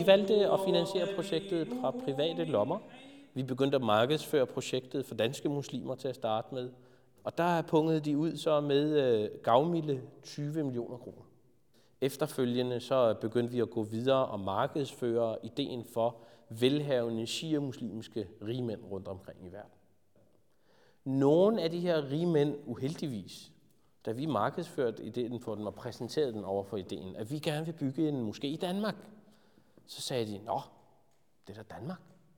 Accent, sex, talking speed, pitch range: native, male, 155 wpm, 115-165 Hz